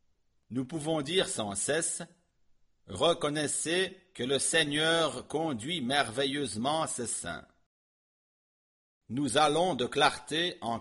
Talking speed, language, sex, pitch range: 100 wpm, English, male, 115-160 Hz